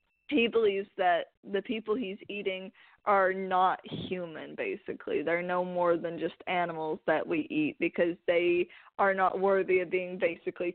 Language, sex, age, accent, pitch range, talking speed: English, female, 20-39, American, 175-205 Hz, 155 wpm